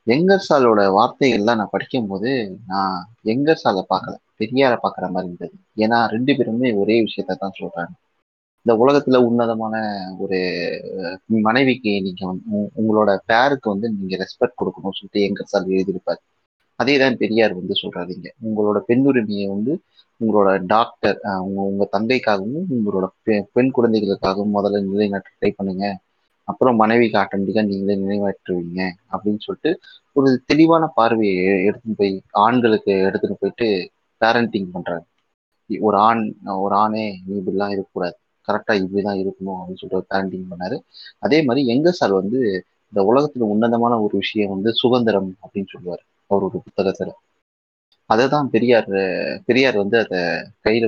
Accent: native